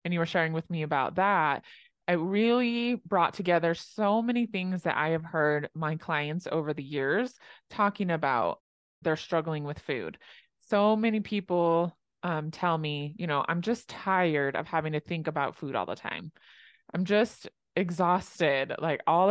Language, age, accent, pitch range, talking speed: English, 20-39, American, 155-205 Hz, 170 wpm